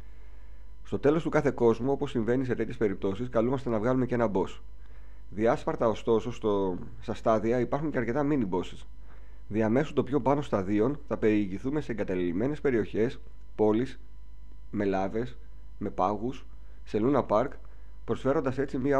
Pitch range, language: 90-125 Hz, Greek